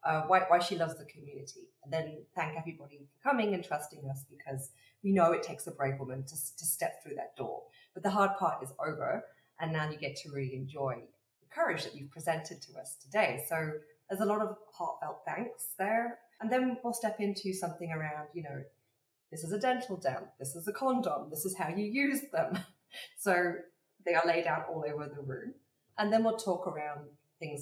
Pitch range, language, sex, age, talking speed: 145-190 Hz, English, female, 30-49, 215 wpm